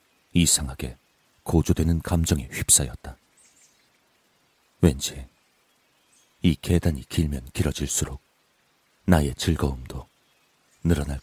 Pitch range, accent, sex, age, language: 70-85 Hz, native, male, 40-59, Korean